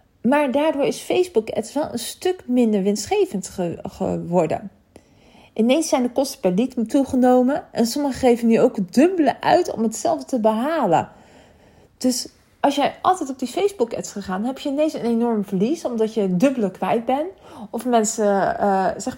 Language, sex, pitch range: Dutch, female, 205-280 Hz